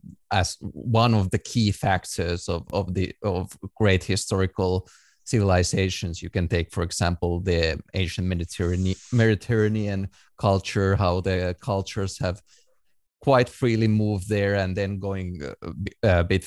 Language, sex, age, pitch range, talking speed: English, male, 30-49, 90-105 Hz, 130 wpm